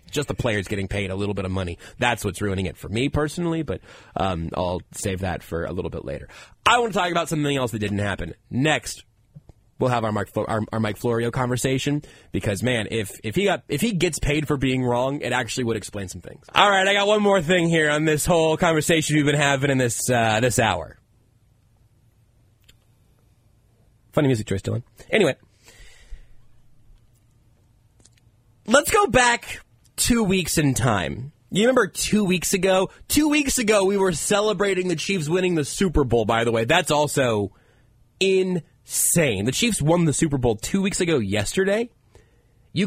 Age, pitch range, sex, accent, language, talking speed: 30-49, 110-165 Hz, male, American, English, 185 wpm